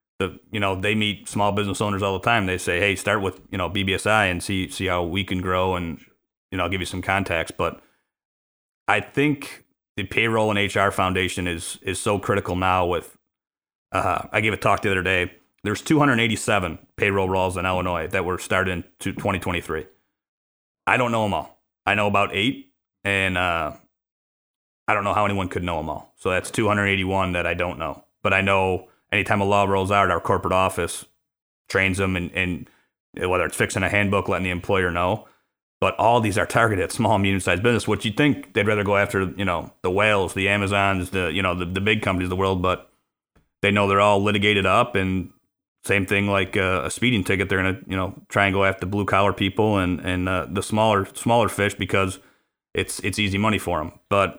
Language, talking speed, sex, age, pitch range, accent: English, 210 wpm, male, 30-49, 95-105 Hz, American